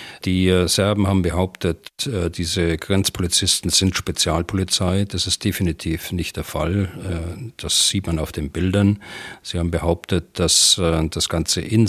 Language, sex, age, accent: German, male, 40-59, German